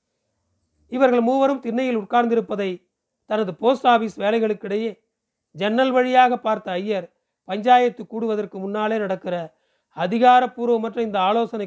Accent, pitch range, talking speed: native, 185-230 Hz, 100 wpm